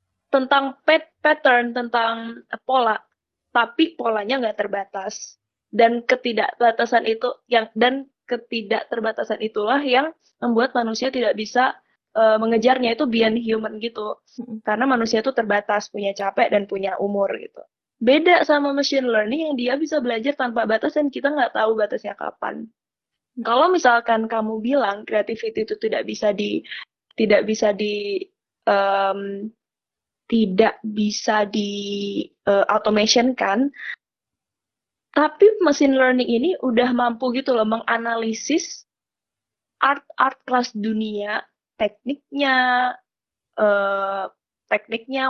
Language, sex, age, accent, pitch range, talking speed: Indonesian, female, 20-39, native, 220-265 Hz, 115 wpm